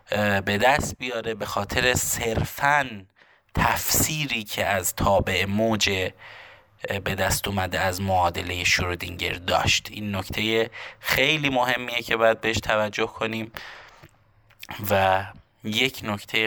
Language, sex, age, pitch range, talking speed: Persian, male, 20-39, 100-120 Hz, 110 wpm